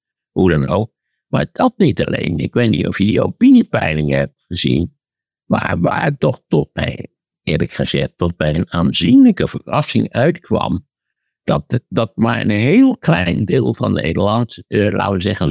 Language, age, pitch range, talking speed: Dutch, 60-79, 75-120 Hz, 165 wpm